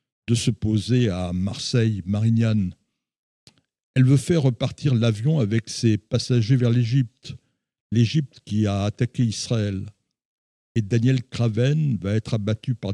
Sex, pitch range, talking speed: male, 110-135 Hz, 130 wpm